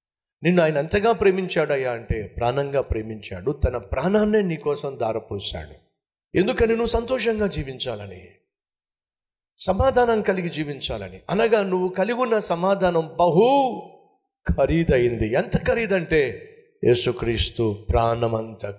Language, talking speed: Telugu, 95 wpm